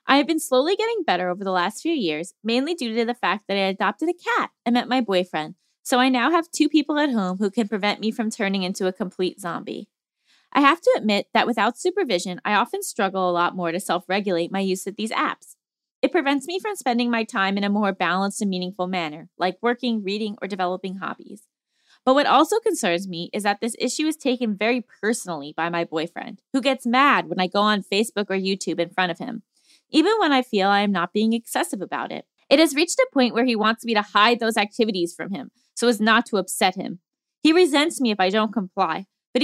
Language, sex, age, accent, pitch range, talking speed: English, female, 20-39, American, 195-270 Hz, 235 wpm